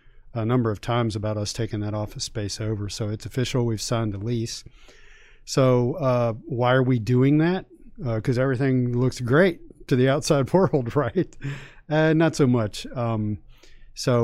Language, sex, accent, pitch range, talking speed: English, male, American, 105-125 Hz, 175 wpm